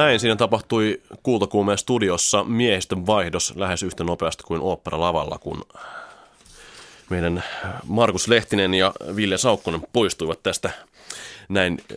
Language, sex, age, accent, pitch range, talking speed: Finnish, male, 30-49, native, 85-110 Hz, 110 wpm